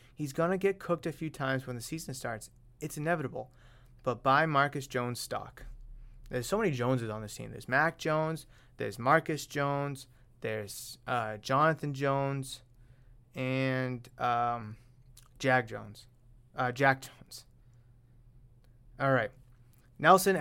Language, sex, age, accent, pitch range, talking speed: English, male, 20-39, American, 125-160 Hz, 135 wpm